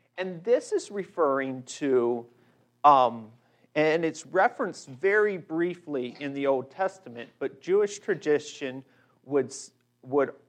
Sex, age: male, 40-59